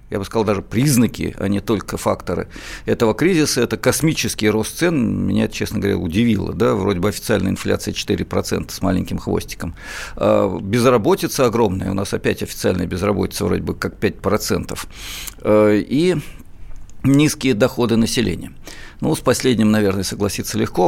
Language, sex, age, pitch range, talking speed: Russian, male, 50-69, 100-120 Hz, 140 wpm